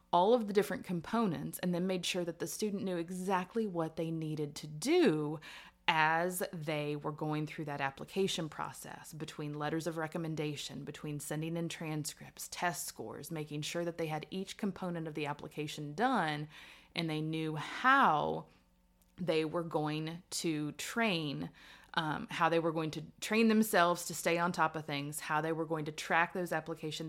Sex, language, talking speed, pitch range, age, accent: female, English, 175 wpm, 150-175 Hz, 30-49, American